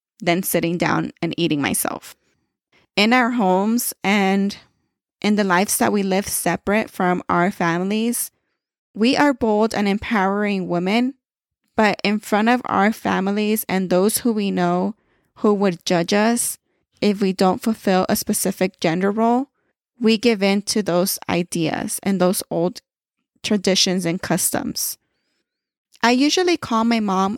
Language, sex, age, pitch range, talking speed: English, female, 20-39, 185-225 Hz, 145 wpm